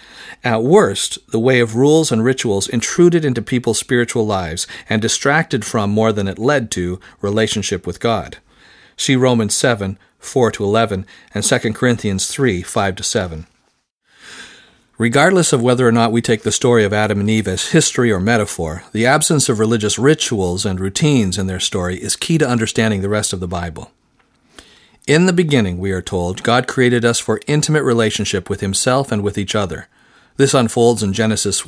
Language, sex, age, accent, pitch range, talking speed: English, male, 50-69, American, 100-130 Hz, 170 wpm